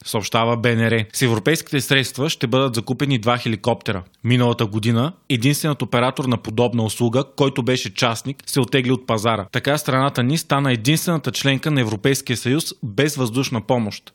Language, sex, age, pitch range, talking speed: Bulgarian, male, 20-39, 120-135 Hz, 155 wpm